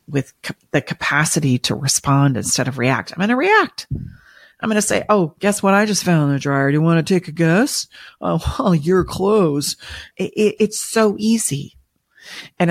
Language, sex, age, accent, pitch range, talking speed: English, female, 40-59, American, 145-200 Hz, 185 wpm